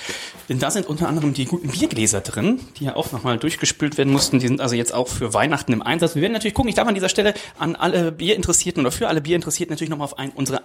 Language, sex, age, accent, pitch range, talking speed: German, male, 30-49, German, 130-180 Hz, 255 wpm